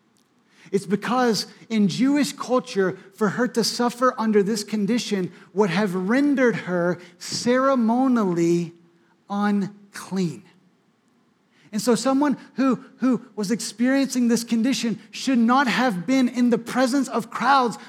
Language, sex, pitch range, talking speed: English, male, 195-245 Hz, 120 wpm